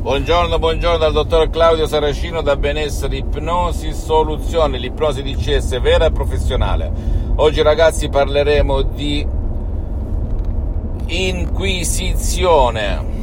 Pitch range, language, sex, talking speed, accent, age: 75-90 Hz, Italian, male, 90 wpm, native, 50-69